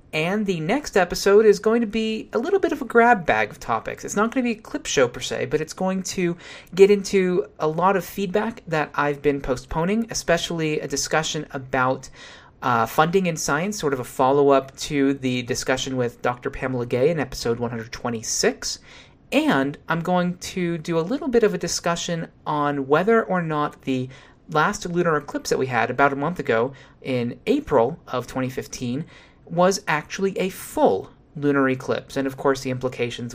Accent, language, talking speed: American, English, 185 wpm